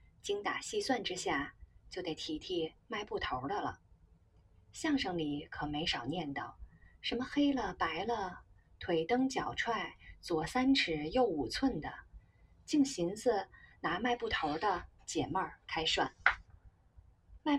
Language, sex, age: Chinese, female, 20-39